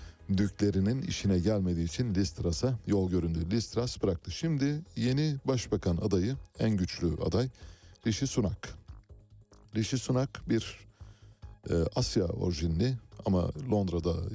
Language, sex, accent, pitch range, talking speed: Turkish, male, native, 90-110 Hz, 110 wpm